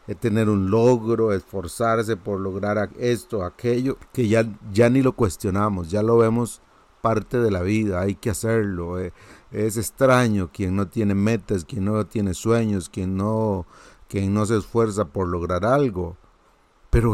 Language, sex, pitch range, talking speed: Spanish, male, 90-110 Hz, 160 wpm